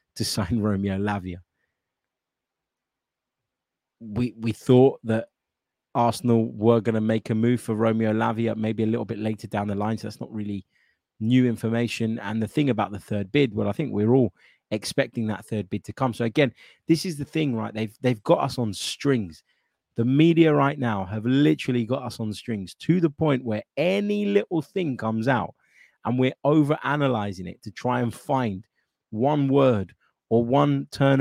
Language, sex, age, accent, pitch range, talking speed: English, male, 20-39, British, 105-130 Hz, 185 wpm